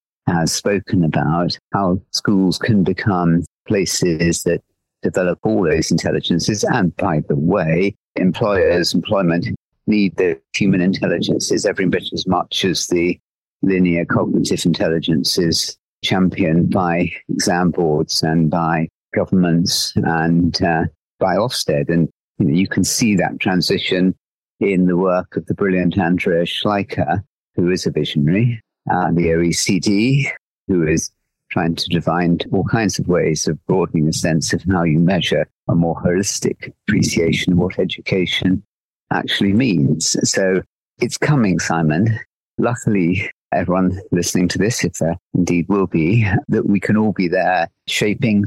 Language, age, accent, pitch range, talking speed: English, 50-69, British, 85-95 Hz, 140 wpm